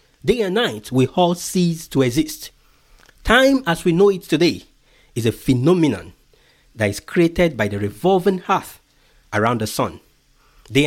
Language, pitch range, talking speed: English, 115-165 Hz, 155 wpm